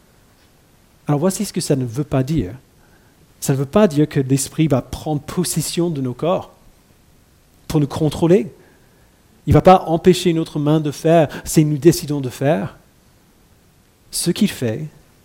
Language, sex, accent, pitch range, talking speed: French, male, French, 135-170 Hz, 170 wpm